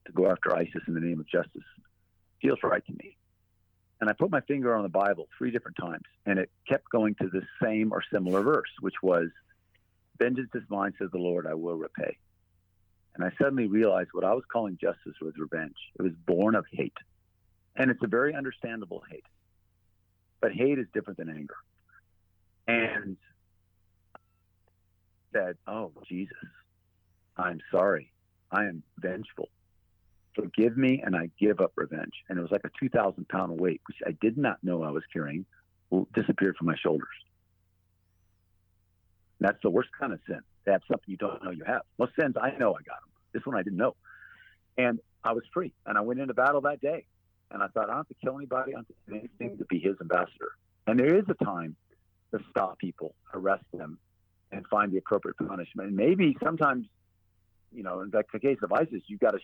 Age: 50-69